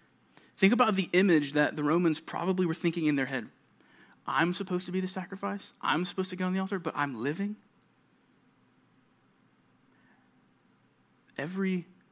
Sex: male